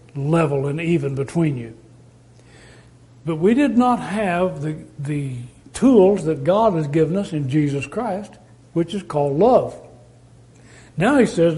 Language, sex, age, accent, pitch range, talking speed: English, male, 60-79, American, 125-185 Hz, 145 wpm